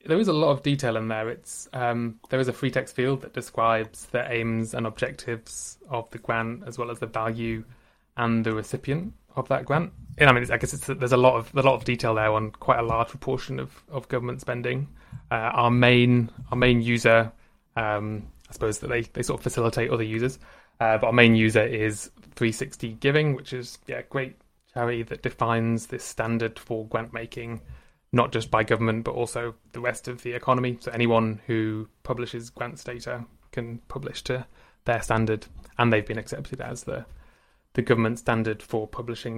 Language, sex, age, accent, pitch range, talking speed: English, male, 20-39, British, 115-125 Hz, 200 wpm